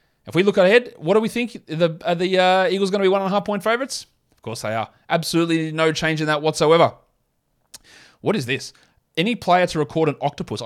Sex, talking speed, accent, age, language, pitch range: male, 230 wpm, Australian, 20-39, English, 130-170 Hz